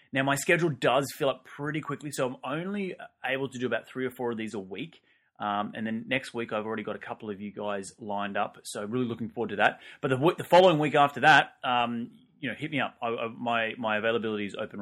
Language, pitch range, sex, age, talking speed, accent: English, 105-140 Hz, male, 30-49, 255 wpm, Australian